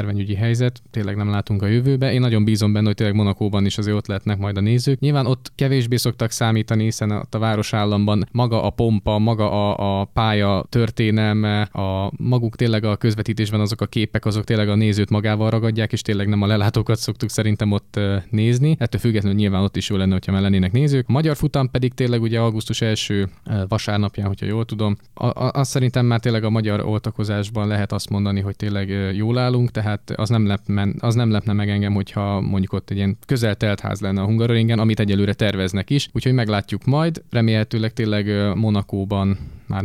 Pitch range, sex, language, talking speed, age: 100-115 Hz, male, Hungarian, 195 wpm, 20-39